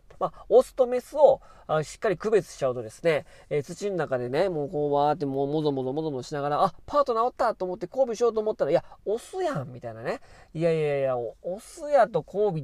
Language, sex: Japanese, male